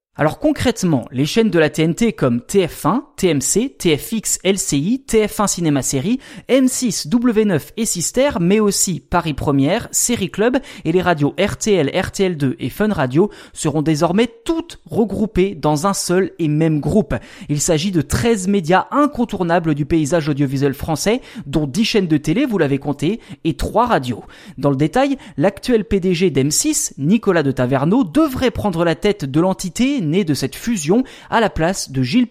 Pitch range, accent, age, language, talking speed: 150-225 Hz, French, 20-39, French, 165 wpm